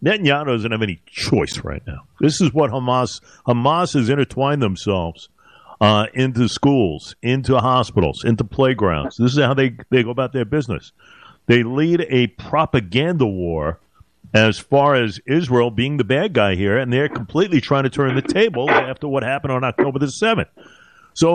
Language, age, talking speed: English, 50-69, 170 wpm